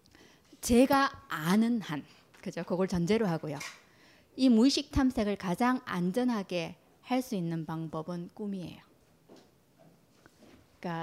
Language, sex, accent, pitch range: Korean, female, native, 180-255 Hz